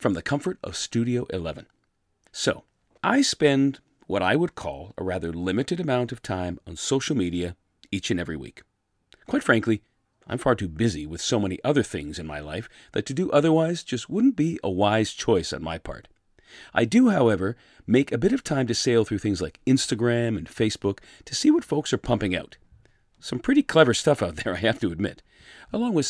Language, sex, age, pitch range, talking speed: English, male, 40-59, 95-145 Hz, 200 wpm